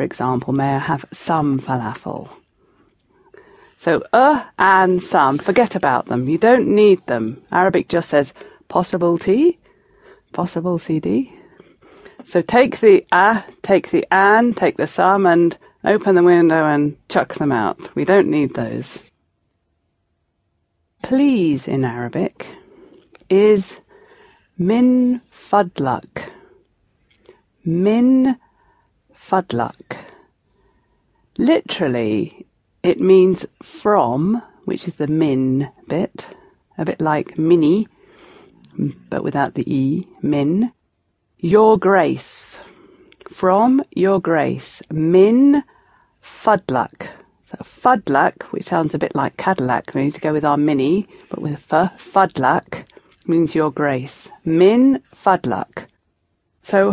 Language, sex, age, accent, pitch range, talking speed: English, female, 40-59, British, 145-245 Hz, 110 wpm